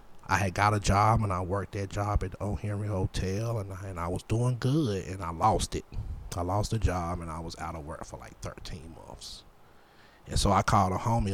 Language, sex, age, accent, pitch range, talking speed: English, male, 30-49, American, 90-105 Hz, 240 wpm